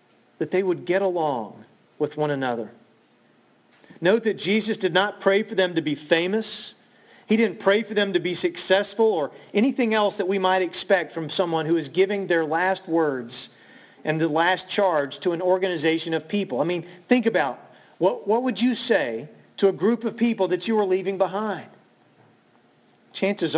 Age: 40-59